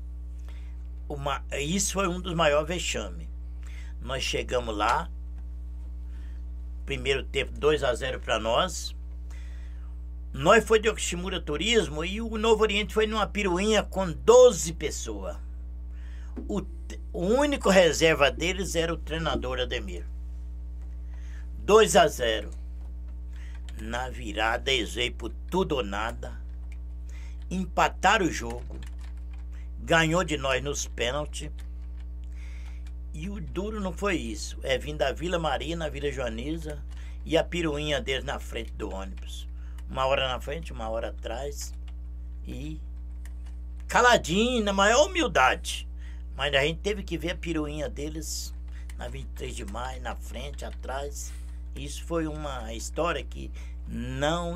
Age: 60-79